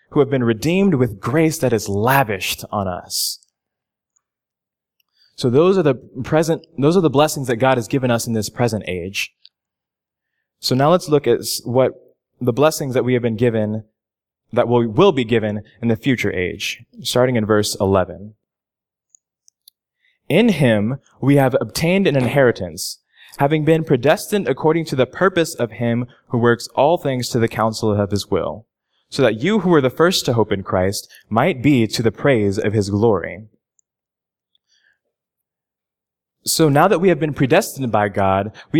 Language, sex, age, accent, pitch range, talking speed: English, male, 20-39, American, 110-150 Hz, 170 wpm